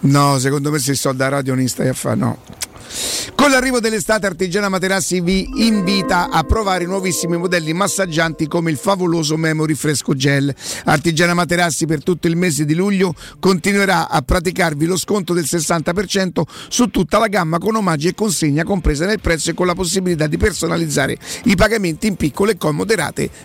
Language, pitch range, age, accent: Italian, 160-200 Hz, 50-69, native